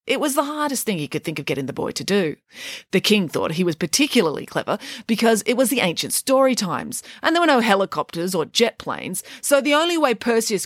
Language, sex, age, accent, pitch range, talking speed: English, female, 30-49, Australian, 165-260 Hz, 230 wpm